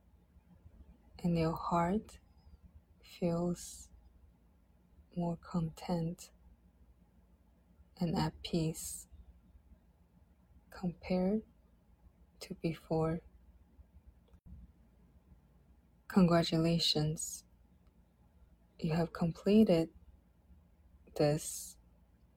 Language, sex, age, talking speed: English, female, 20-39, 45 wpm